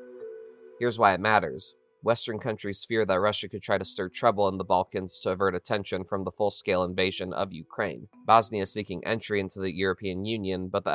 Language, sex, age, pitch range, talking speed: English, male, 30-49, 95-105 Hz, 195 wpm